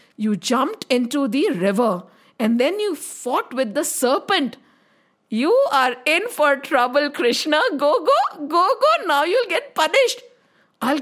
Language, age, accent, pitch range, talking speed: English, 50-69, Indian, 255-395 Hz, 145 wpm